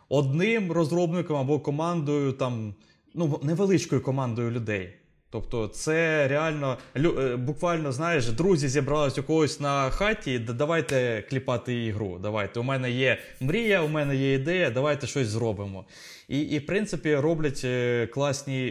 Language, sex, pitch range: Ukrainian, male, 120-150 Hz